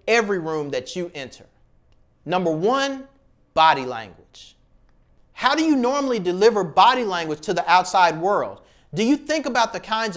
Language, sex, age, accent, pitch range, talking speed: English, male, 30-49, American, 170-235 Hz, 155 wpm